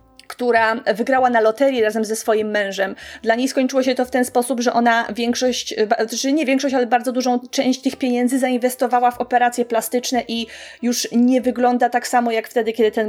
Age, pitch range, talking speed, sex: 30-49, 220-255 Hz, 195 wpm, female